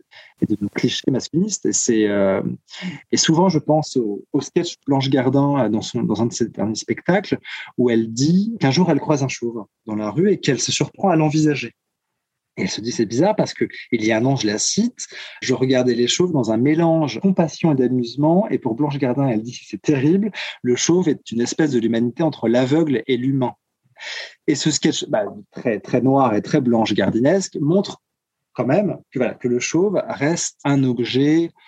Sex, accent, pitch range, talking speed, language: male, French, 120-155 Hz, 210 wpm, French